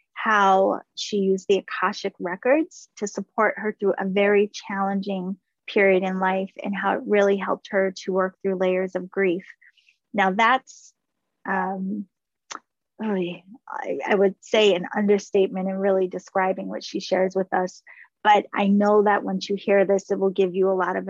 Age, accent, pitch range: 20-39, American, 190-215 Hz